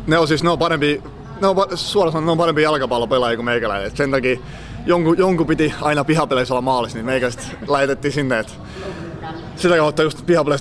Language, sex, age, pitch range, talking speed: Finnish, male, 30-49, 120-145 Hz, 160 wpm